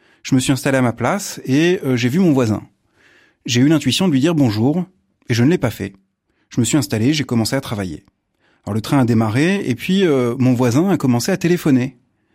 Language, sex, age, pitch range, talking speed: French, male, 30-49, 130-180 Hz, 235 wpm